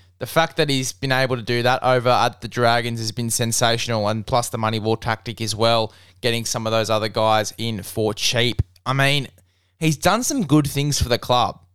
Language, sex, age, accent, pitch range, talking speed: English, male, 10-29, Australian, 115-140 Hz, 220 wpm